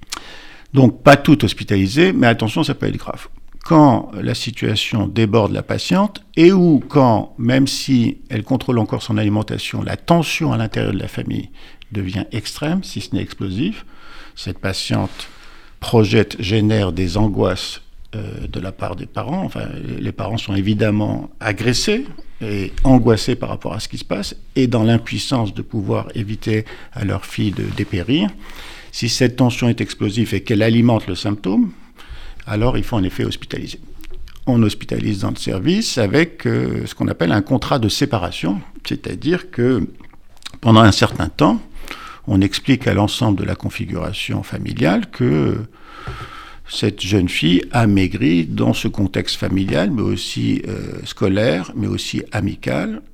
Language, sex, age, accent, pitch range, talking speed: French, male, 50-69, French, 100-125 Hz, 155 wpm